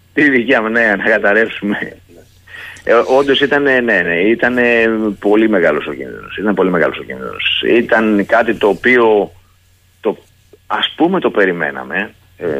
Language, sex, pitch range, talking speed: Greek, male, 90-110 Hz, 140 wpm